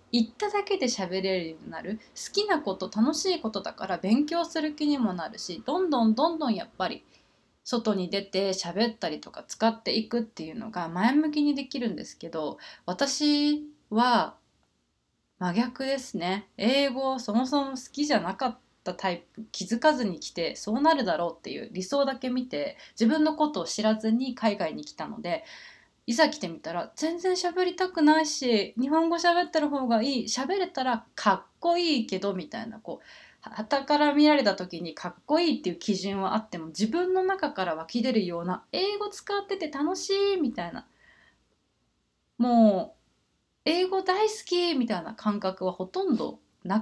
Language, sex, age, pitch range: Japanese, female, 20-39, 195-300 Hz